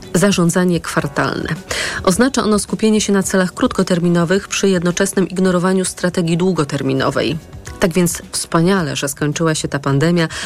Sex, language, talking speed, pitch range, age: female, Polish, 125 wpm, 155-185 Hz, 40-59